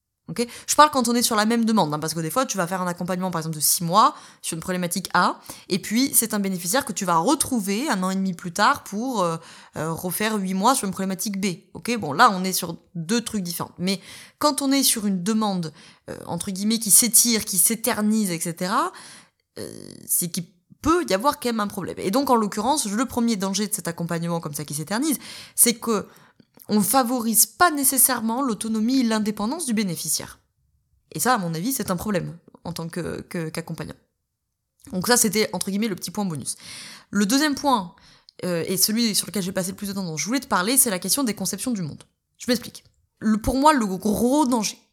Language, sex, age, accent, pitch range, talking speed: French, female, 20-39, French, 180-235 Hz, 220 wpm